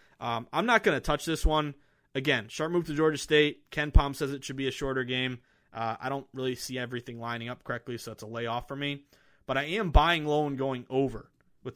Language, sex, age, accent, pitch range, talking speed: English, male, 20-39, American, 115-145 Hz, 240 wpm